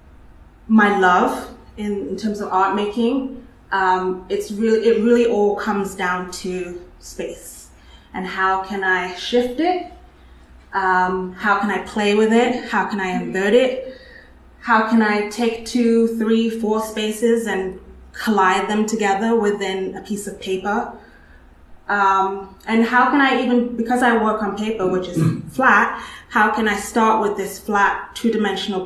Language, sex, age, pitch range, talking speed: English, female, 20-39, 185-225 Hz, 155 wpm